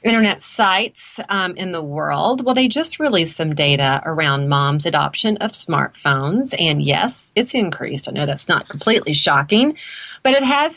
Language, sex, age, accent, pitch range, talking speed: English, female, 40-59, American, 150-245 Hz, 165 wpm